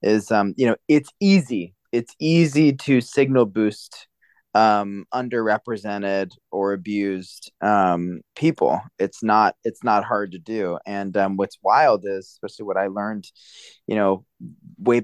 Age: 20-39